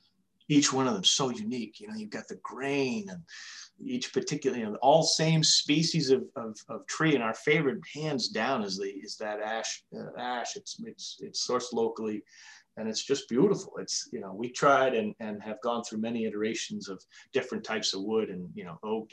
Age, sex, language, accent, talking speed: 30-49, male, English, American, 215 wpm